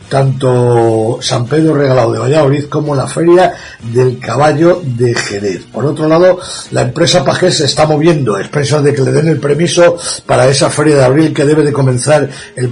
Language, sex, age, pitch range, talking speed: Spanish, male, 60-79, 125-155 Hz, 185 wpm